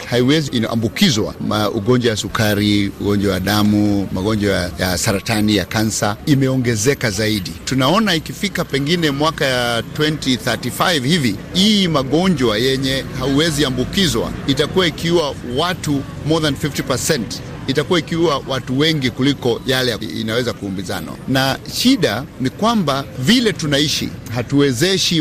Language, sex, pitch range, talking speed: Swahili, male, 120-160 Hz, 110 wpm